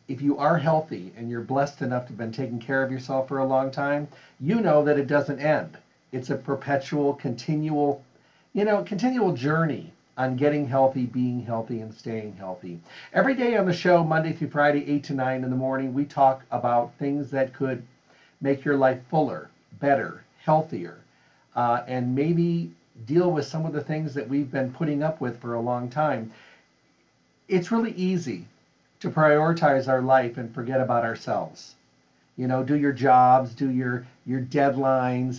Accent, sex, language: American, male, English